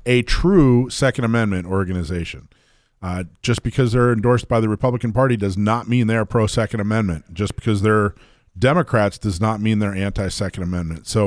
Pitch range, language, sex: 95-125 Hz, English, male